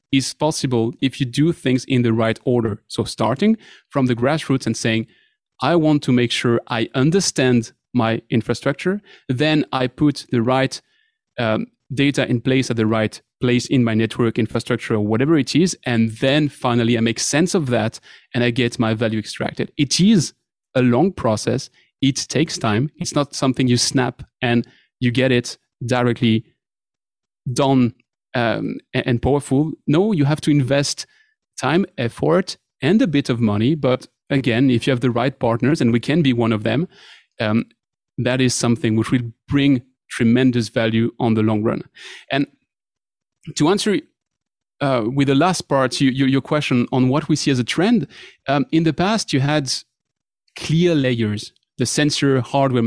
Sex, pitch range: male, 120-145 Hz